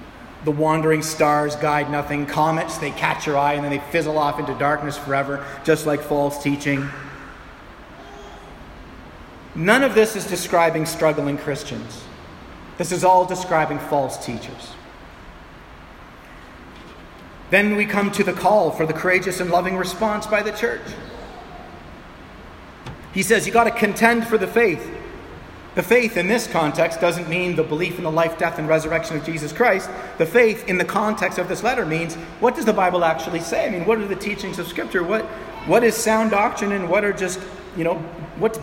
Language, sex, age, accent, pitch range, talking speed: English, male, 40-59, American, 145-200 Hz, 175 wpm